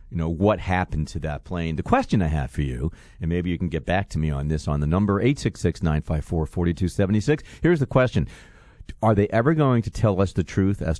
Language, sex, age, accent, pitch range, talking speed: English, male, 50-69, American, 80-110 Hz, 265 wpm